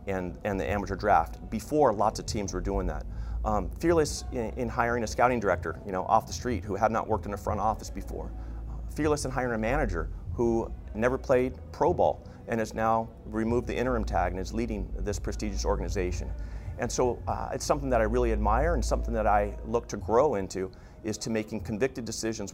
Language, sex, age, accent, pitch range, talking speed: English, male, 40-59, American, 90-115 Hz, 215 wpm